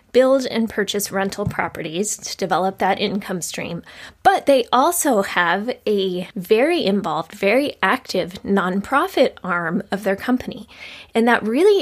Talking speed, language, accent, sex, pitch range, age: 135 wpm, English, American, female, 195-250 Hz, 20-39